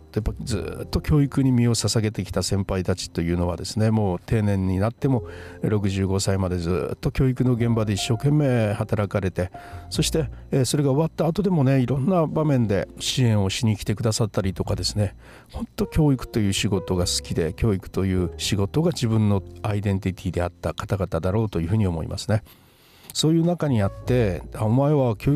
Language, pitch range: Japanese, 95-130 Hz